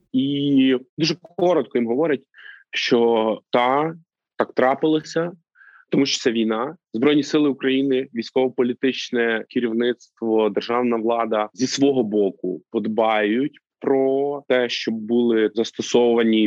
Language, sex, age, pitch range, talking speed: Ukrainian, male, 20-39, 115-175 Hz, 105 wpm